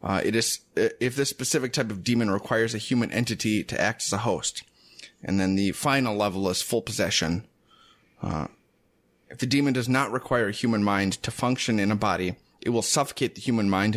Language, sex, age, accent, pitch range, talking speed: English, male, 30-49, American, 105-125 Hz, 205 wpm